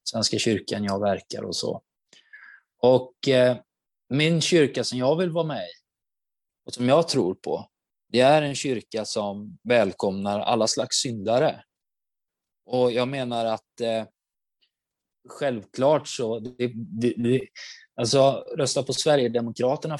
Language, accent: Swedish, native